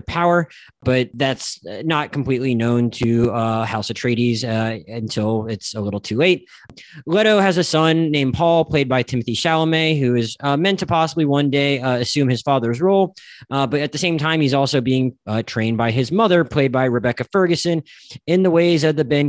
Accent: American